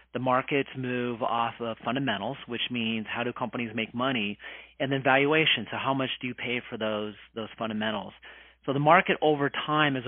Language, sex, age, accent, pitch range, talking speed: English, male, 40-59, American, 115-135 Hz, 190 wpm